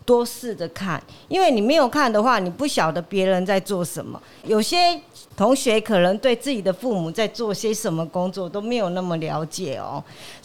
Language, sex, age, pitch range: Chinese, female, 50-69, 185-245 Hz